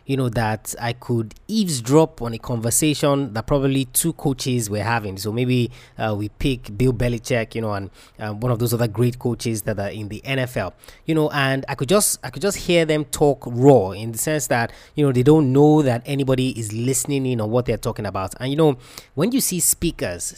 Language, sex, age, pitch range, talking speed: English, male, 20-39, 120-150 Hz, 225 wpm